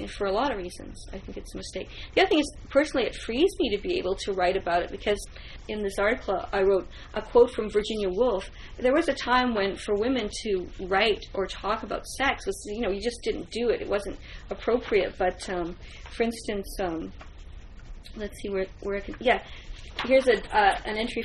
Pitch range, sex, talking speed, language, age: 195-245 Hz, female, 215 wpm, English, 40-59